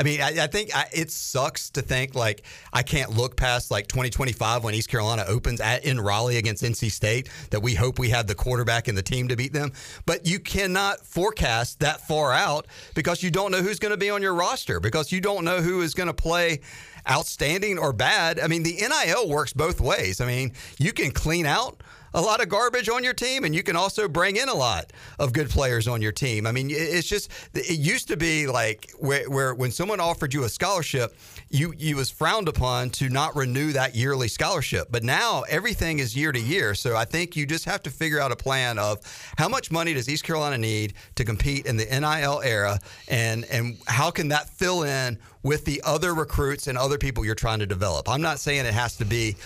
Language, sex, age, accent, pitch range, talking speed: English, male, 40-59, American, 115-155 Hz, 230 wpm